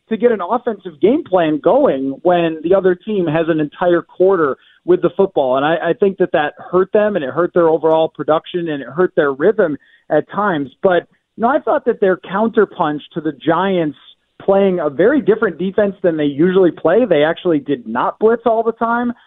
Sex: male